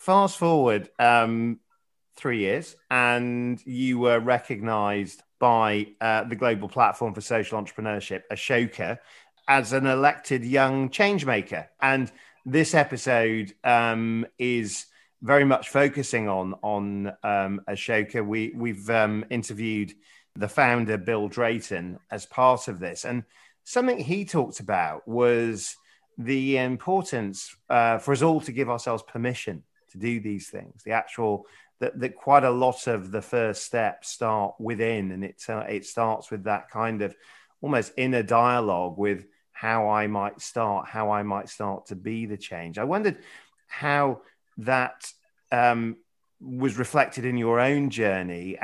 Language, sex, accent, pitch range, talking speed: English, male, British, 105-125 Hz, 145 wpm